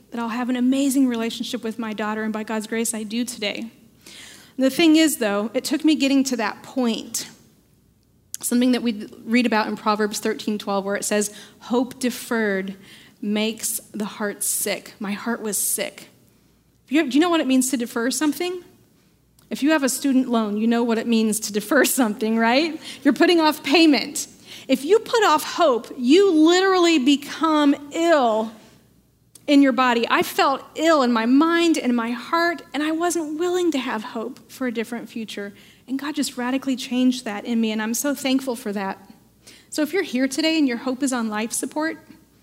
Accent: American